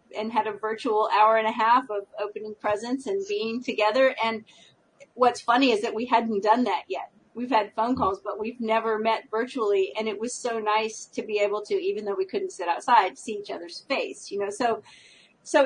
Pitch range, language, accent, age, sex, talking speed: 205-270 Hz, English, American, 40-59, female, 215 wpm